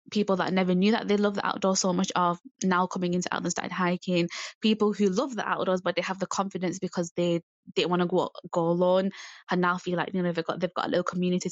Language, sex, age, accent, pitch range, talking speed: English, female, 10-29, British, 175-200 Hz, 250 wpm